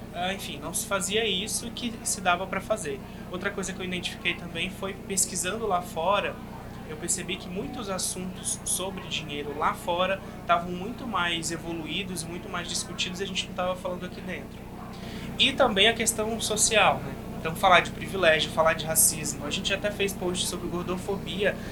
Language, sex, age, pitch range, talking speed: Portuguese, male, 20-39, 175-200 Hz, 175 wpm